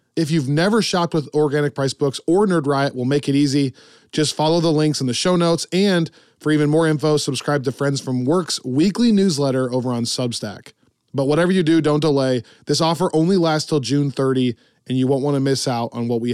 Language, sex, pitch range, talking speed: English, male, 135-170 Hz, 225 wpm